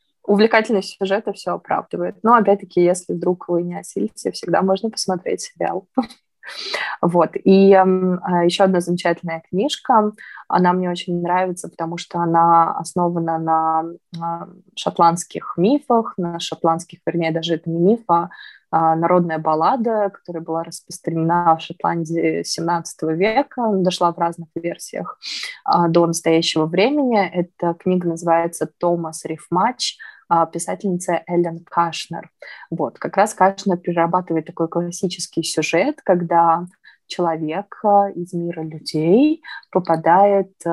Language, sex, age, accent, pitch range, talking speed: Russian, female, 20-39, native, 165-190 Hz, 115 wpm